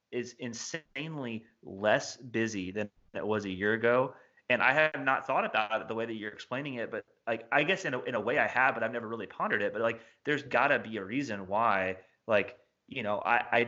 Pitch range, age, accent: 105-130 Hz, 30-49, American